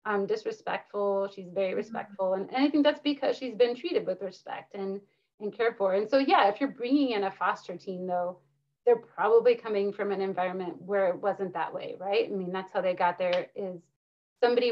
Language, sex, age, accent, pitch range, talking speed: English, female, 30-49, American, 185-225 Hz, 210 wpm